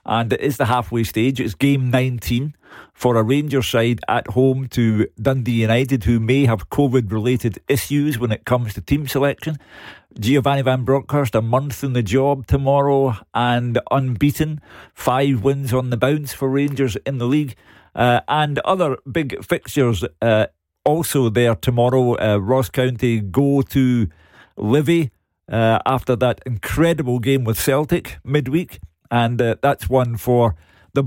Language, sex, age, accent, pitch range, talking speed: English, male, 50-69, British, 115-140 Hz, 155 wpm